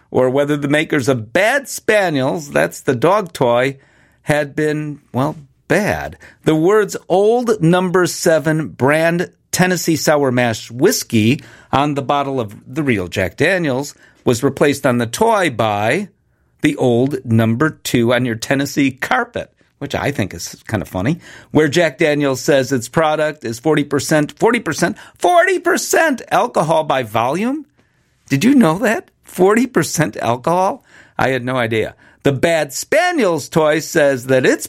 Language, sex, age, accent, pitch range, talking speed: English, male, 50-69, American, 130-165 Hz, 145 wpm